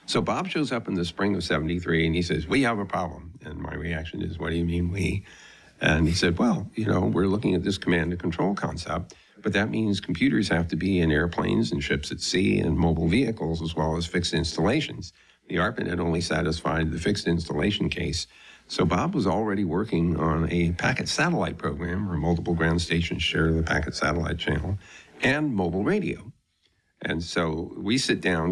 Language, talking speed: English, 200 wpm